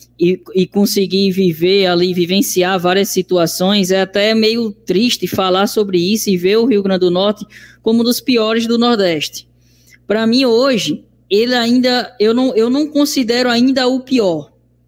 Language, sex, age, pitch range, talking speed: Portuguese, female, 10-29, 180-230 Hz, 160 wpm